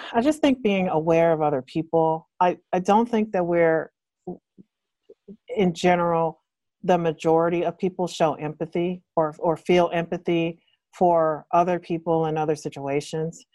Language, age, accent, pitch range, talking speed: English, 40-59, American, 165-210 Hz, 140 wpm